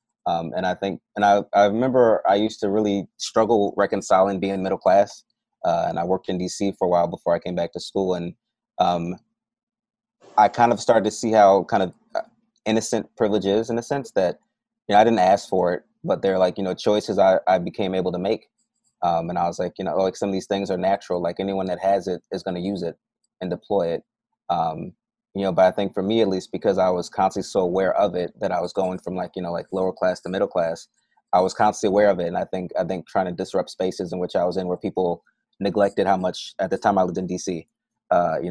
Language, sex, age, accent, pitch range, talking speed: English, male, 20-39, American, 90-110 Hz, 250 wpm